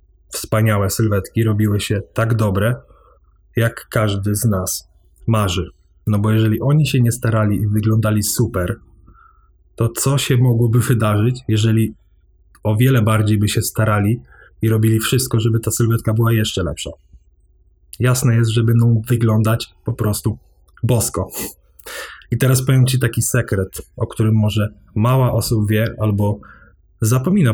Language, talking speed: Polish, 140 wpm